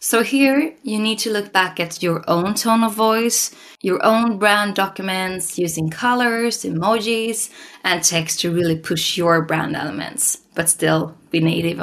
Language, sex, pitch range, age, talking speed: English, female, 165-225 Hz, 20-39, 160 wpm